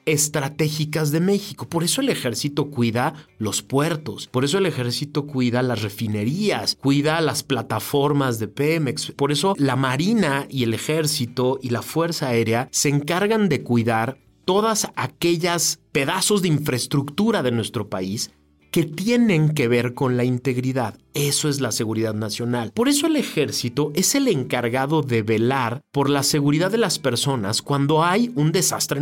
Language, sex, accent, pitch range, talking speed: Spanish, male, Mexican, 120-170 Hz, 155 wpm